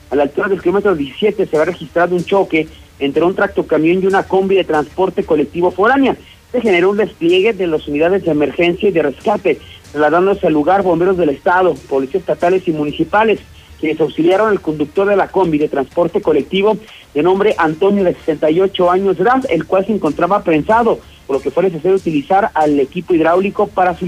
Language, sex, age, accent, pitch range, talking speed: Spanish, male, 40-59, Mexican, 155-195 Hz, 190 wpm